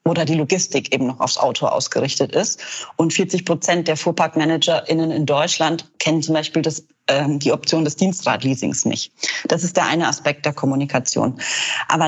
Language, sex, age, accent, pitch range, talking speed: German, female, 30-49, German, 155-190 Hz, 170 wpm